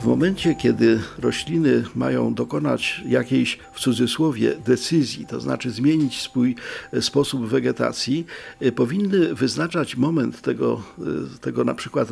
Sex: male